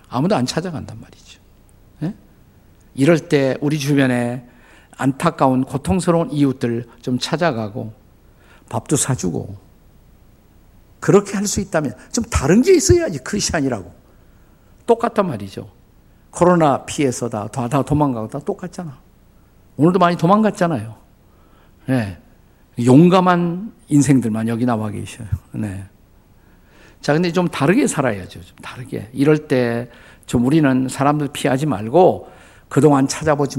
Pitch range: 110-160 Hz